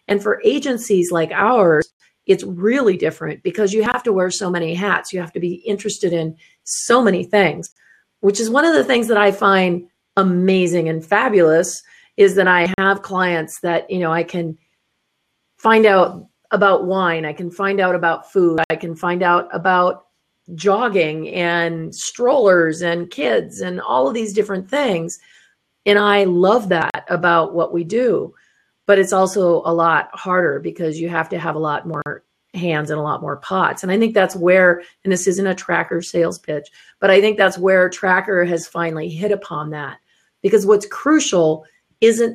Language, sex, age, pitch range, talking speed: English, female, 40-59, 170-200 Hz, 180 wpm